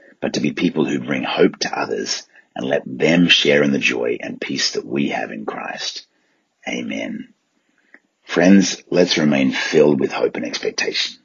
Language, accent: English, Australian